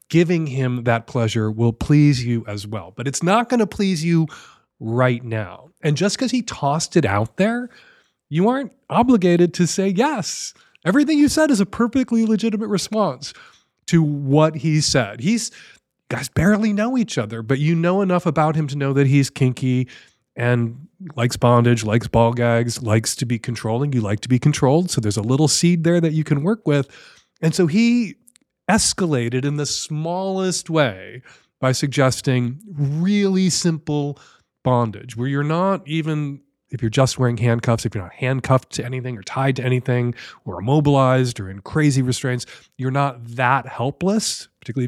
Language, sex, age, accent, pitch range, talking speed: English, male, 30-49, American, 125-185 Hz, 175 wpm